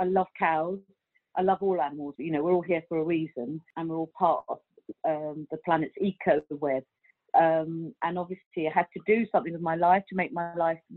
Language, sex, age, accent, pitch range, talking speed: English, female, 40-59, British, 165-190 Hz, 210 wpm